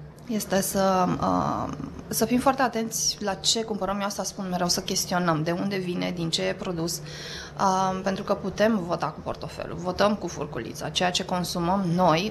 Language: Romanian